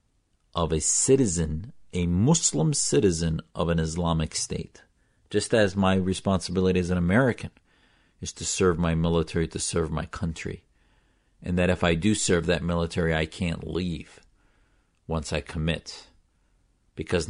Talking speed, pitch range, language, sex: 140 wpm, 80-95 Hz, English, male